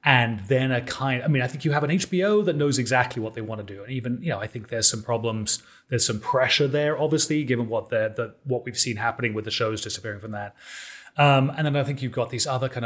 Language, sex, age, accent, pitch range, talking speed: English, male, 30-49, British, 115-140 Hz, 260 wpm